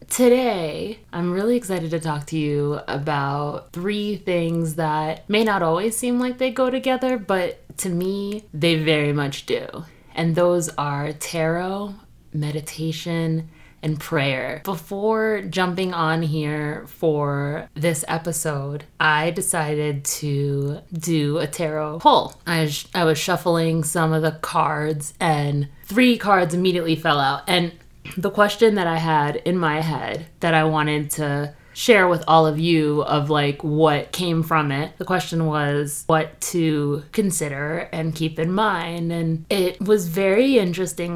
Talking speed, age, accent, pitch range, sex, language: 150 wpm, 20-39, American, 150-180 Hz, female, English